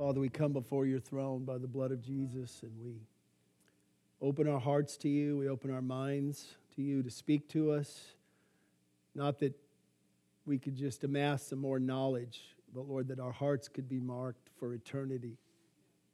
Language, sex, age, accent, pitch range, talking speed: English, male, 50-69, American, 125-145 Hz, 175 wpm